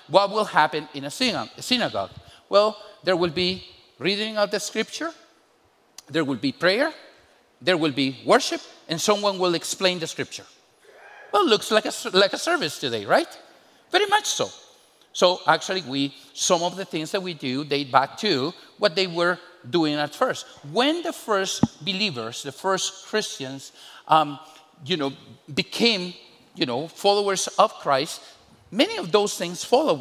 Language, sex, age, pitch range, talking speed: English, male, 50-69, 160-220 Hz, 165 wpm